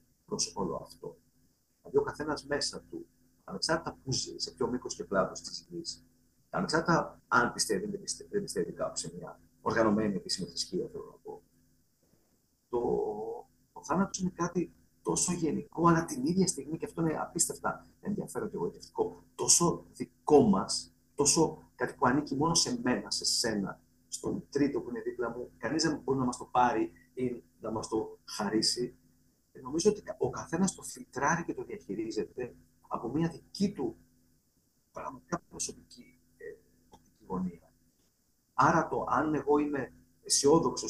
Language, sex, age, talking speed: Greek, male, 50-69, 150 wpm